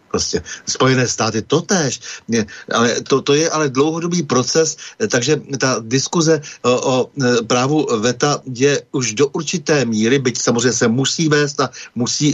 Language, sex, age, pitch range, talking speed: Slovak, male, 60-79, 120-150 Hz, 145 wpm